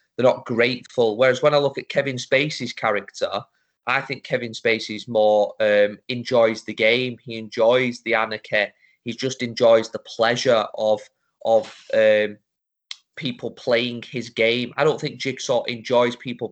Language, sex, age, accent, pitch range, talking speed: English, male, 20-39, British, 110-125 Hz, 155 wpm